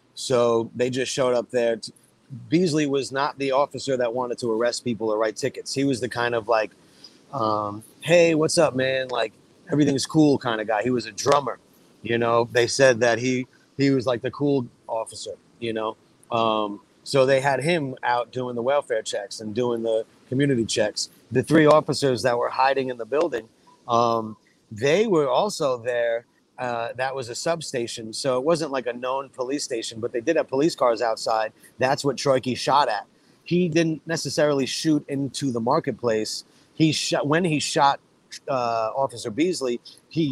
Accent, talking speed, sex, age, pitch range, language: American, 185 wpm, male, 30-49, 115-140 Hz, English